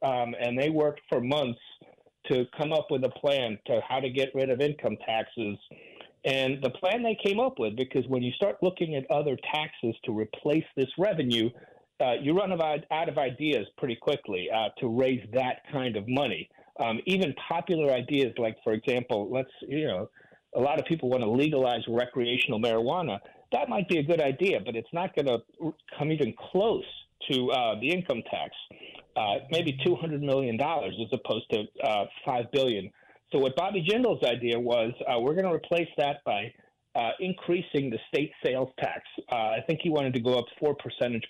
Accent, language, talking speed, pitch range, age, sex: American, English, 185 wpm, 120-160 Hz, 40-59, male